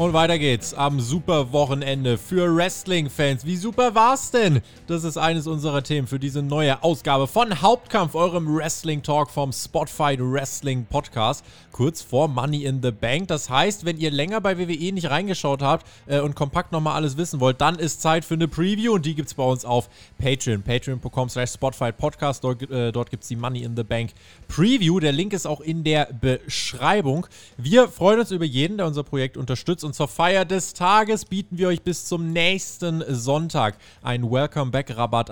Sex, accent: male, German